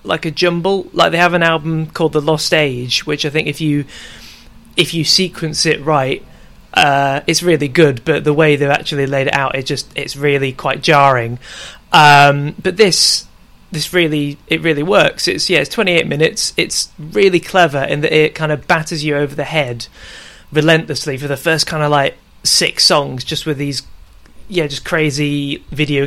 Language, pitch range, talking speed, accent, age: English, 145-170 Hz, 190 wpm, British, 30-49